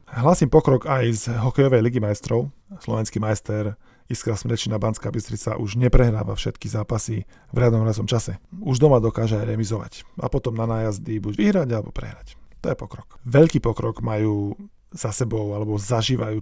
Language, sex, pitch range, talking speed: Slovak, male, 110-125 Hz, 160 wpm